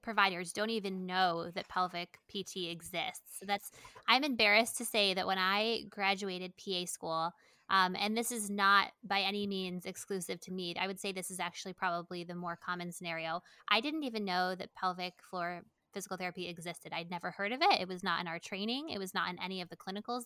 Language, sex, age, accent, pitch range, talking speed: English, female, 20-39, American, 185-220 Hz, 210 wpm